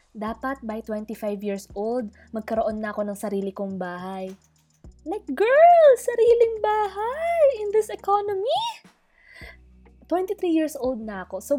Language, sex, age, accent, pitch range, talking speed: Filipino, female, 20-39, native, 215-340 Hz, 130 wpm